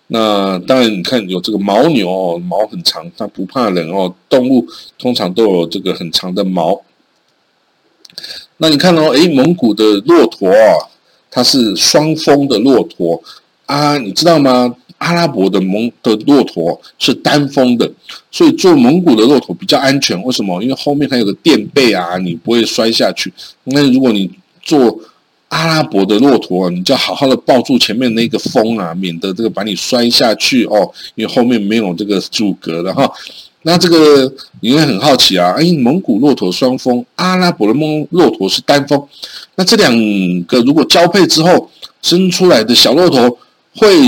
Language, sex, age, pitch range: Chinese, male, 50-69, 100-160 Hz